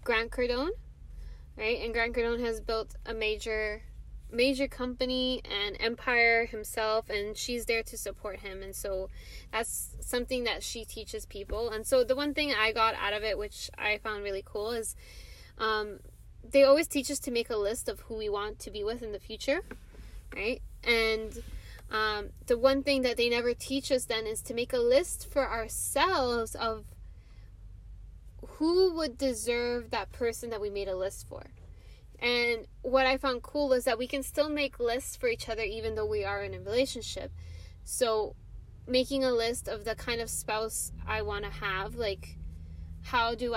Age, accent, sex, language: 10-29, American, female, English